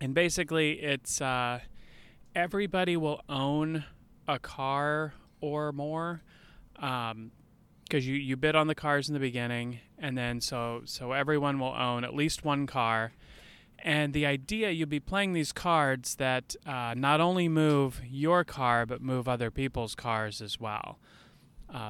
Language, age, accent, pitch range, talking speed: English, 30-49, American, 120-150 Hz, 155 wpm